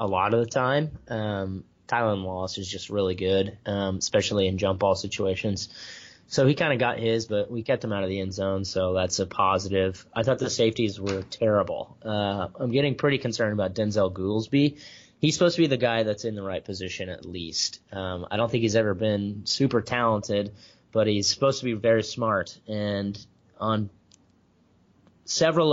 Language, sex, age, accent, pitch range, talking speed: English, male, 20-39, American, 95-115 Hz, 195 wpm